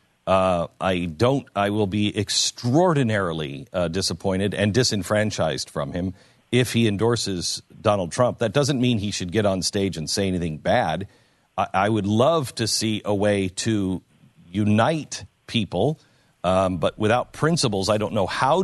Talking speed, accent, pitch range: 160 wpm, American, 95-130 Hz